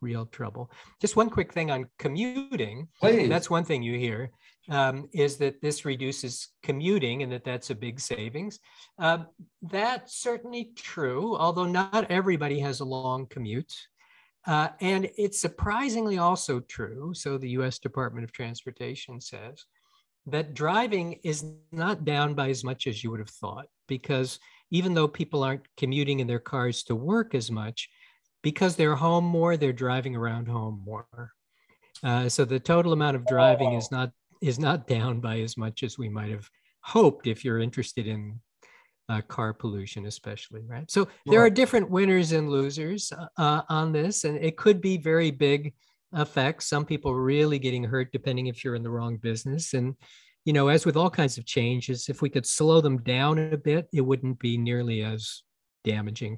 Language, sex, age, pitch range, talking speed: English, male, 50-69, 125-165 Hz, 175 wpm